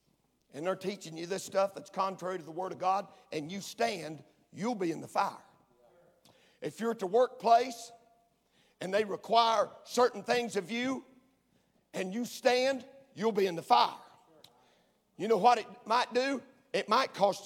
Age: 50-69